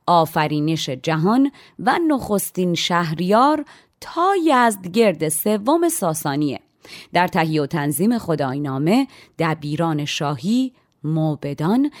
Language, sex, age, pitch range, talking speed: Persian, female, 30-49, 155-215 Hz, 85 wpm